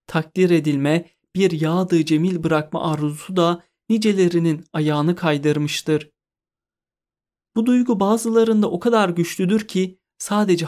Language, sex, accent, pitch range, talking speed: Turkish, male, native, 155-195 Hz, 105 wpm